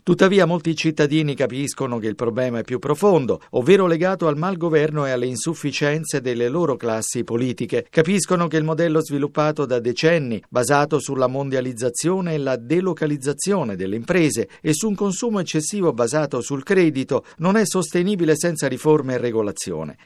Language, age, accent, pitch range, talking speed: Italian, 50-69, native, 125-165 Hz, 155 wpm